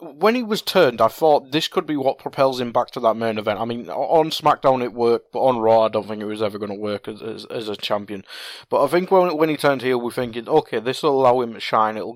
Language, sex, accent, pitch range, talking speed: English, male, British, 115-165 Hz, 285 wpm